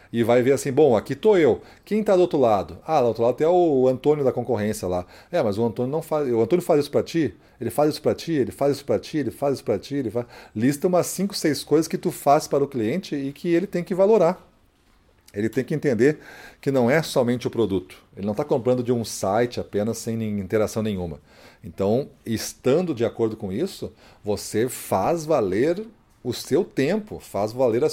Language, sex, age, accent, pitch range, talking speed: Portuguese, male, 40-59, Brazilian, 110-155 Hz, 225 wpm